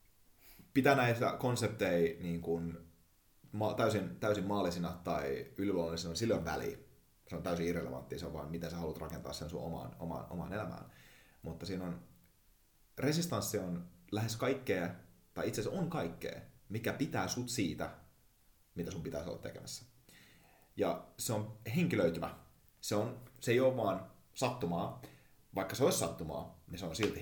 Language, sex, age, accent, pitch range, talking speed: Finnish, male, 30-49, native, 85-105 Hz, 155 wpm